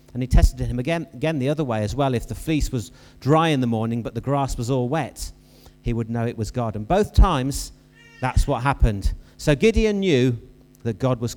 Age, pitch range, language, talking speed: 40-59, 115-175 Hz, English, 225 wpm